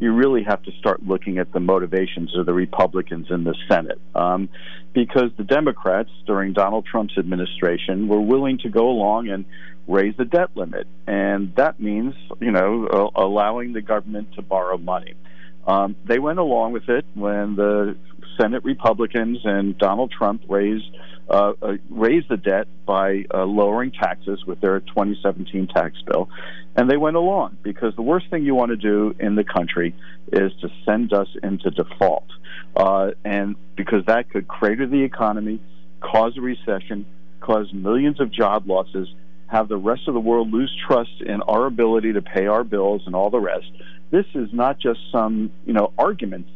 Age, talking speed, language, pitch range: 50-69, 175 wpm, English, 95-120 Hz